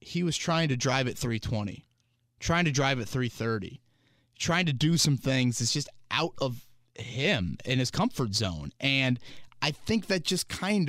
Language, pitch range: English, 115-150 Hz